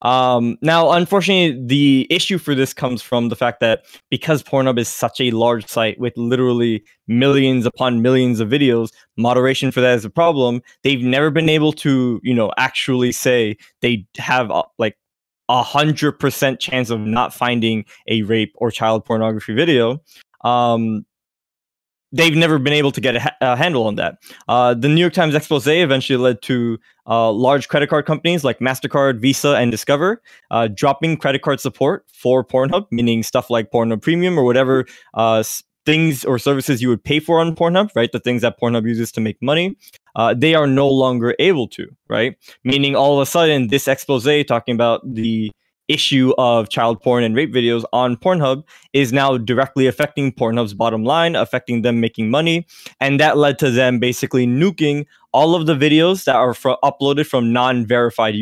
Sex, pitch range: male, 115-145 Hz